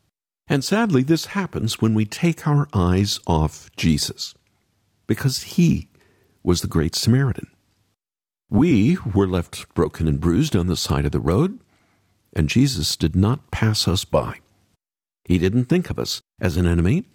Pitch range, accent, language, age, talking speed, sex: 90-135 Hz, American, English, 50-69, 155 wpm, male